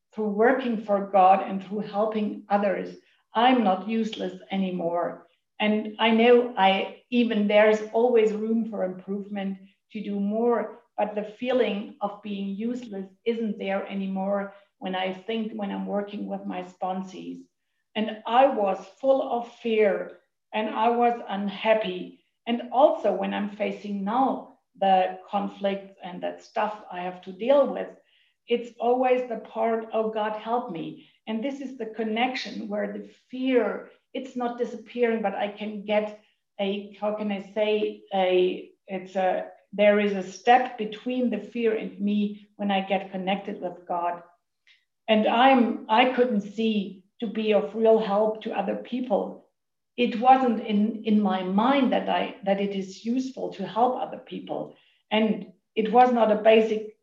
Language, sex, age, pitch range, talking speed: English, female, 50-69, 195-230 Hz, 155 wpm